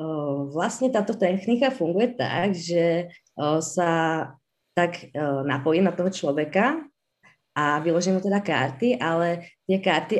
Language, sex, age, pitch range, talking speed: Czech, female, 20-39, 150-180 Hz, 120 wpm